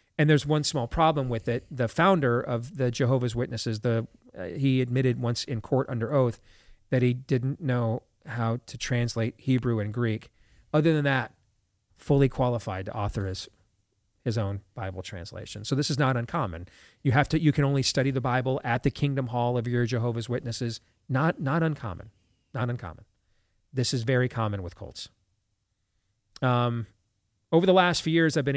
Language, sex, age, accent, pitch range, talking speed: English, male, 40-59, American, 110-145 Hz, 180 wpm